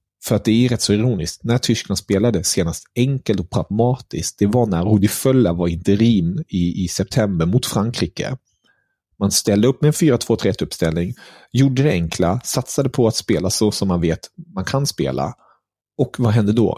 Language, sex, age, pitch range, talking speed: Swedish, male, 30-49, 90-120 Hz, 175 wpm